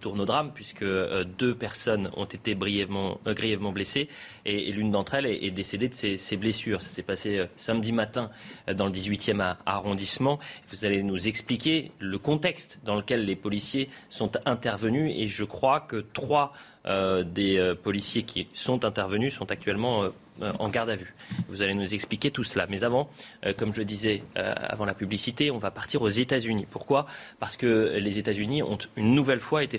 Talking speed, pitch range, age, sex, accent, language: 200 wpm, 100-130 Hz, 30-49, male, French, French